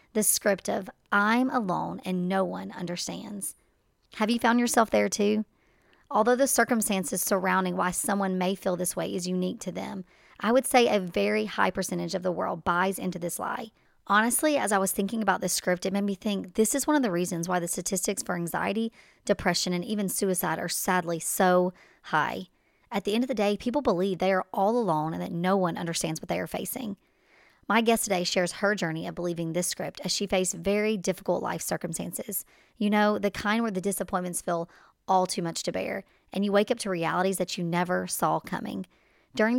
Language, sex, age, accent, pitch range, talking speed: English, male, 40-59, American, 180-210 Hz, 210 wpm